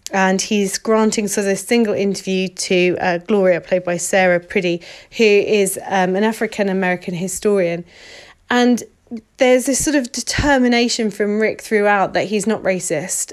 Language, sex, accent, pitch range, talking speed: English, female, British, 185-220 Hz, 155 wpm